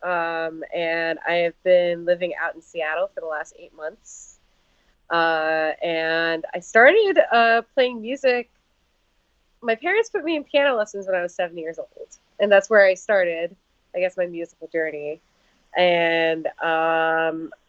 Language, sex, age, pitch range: English, female, 20-39, 165-210 Hz